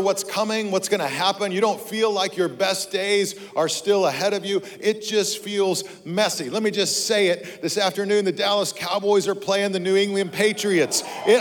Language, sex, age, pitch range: English, male, 50-69, 190-225 Hz